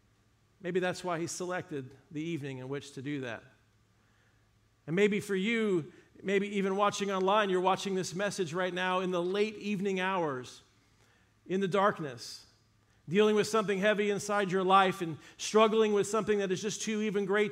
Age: 40-59